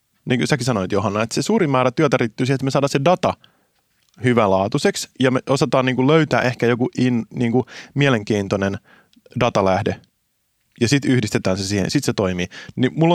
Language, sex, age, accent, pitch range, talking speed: Finnish, male, 30-49, native, 100-130 Hz, 170 wpm